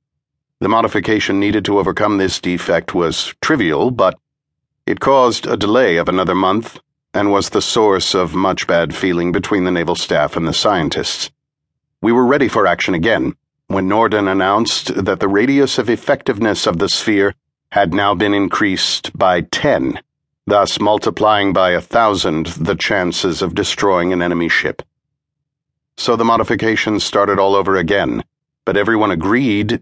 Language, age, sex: English, 50-69, male